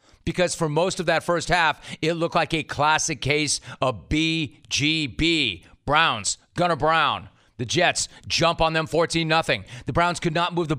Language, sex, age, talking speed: English, male, 40-59, 165 wpm